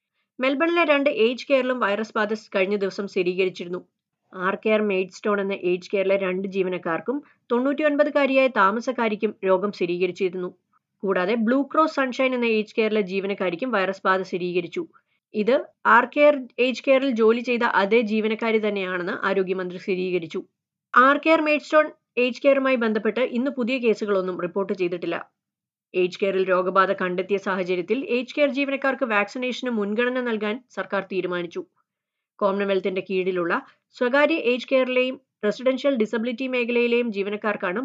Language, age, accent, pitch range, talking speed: Malayalam, 30-49, native, 190-250 Hz, 120 wpm